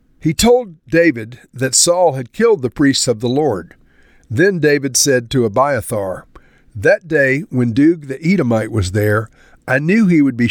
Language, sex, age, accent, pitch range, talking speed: English, male, 50-69, American, 120-155 Hz, 170 wpm